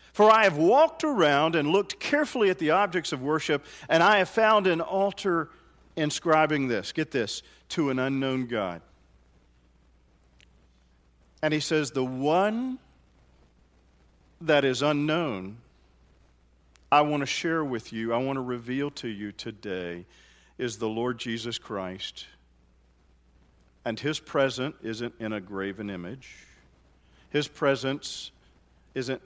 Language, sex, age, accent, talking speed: English, male, 50-69, American, 130 wpm